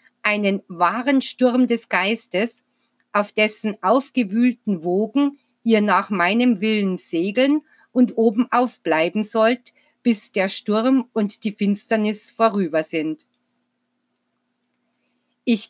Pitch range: 205-245 Hz